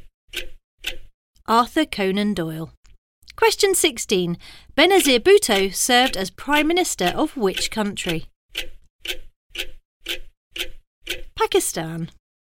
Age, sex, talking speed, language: 40-59, female, 70 wpm, English